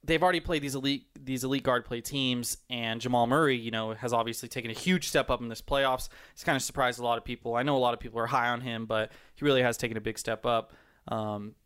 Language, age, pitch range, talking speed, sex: English, 20-39, 120-145 Hz, 275 wpm, male